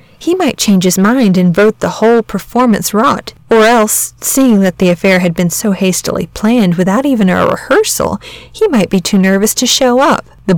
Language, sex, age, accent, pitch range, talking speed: English, female, 30-49, American, 185-225 Hz, 200 wpm